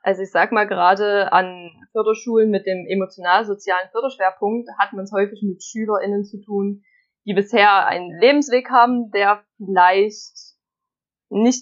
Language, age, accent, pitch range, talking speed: German, 20-39, German, 190-225 Hz, 140 wpm